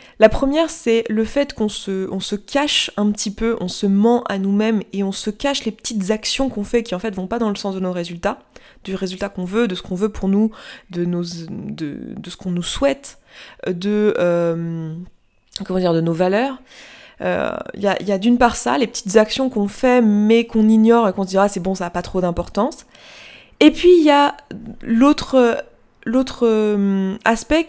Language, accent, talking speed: French, French, 220 wpm